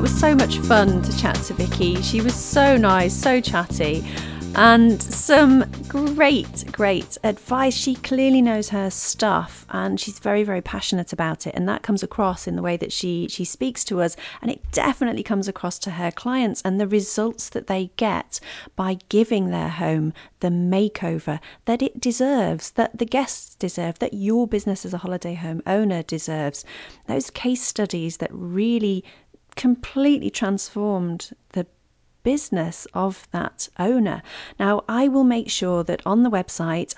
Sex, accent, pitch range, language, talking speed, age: female, British, 170-230 Hz, English, 165 wpm, 40-59